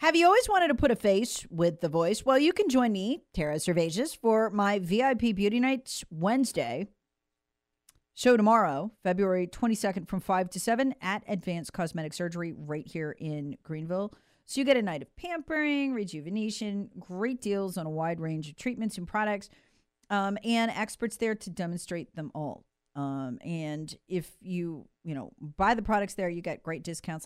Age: 40-59